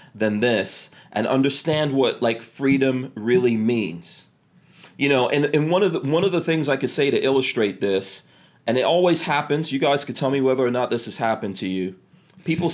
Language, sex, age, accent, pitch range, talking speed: English, male, 40-59, American, 115-160 Hz, 205 wpm